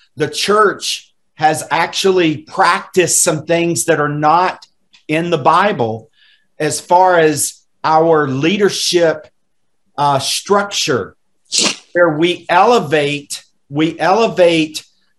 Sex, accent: male, American